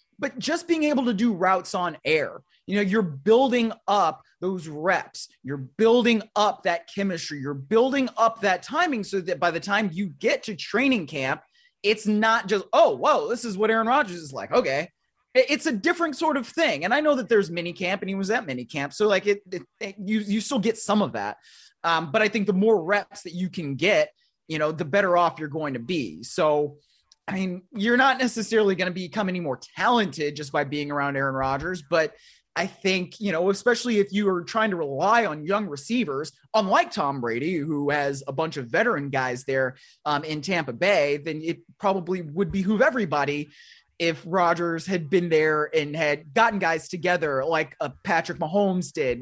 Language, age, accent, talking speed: English, 30-49, American, 205 wpm